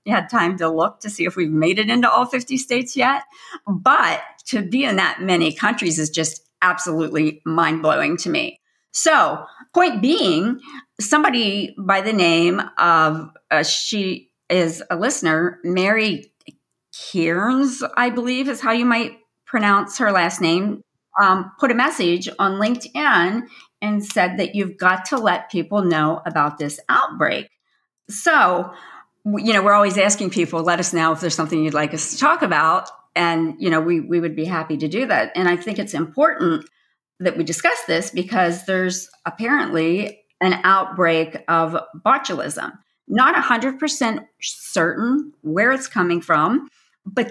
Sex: female